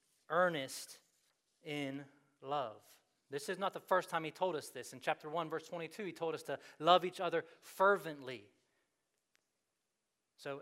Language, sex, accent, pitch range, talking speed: English, male, American, 135-170 Hz, 155 wpm